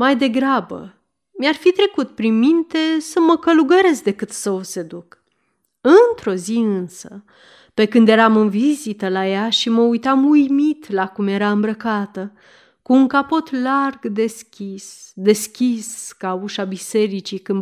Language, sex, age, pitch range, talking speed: Romanian, female, 30-49, 205-275 Hz, 145 wpm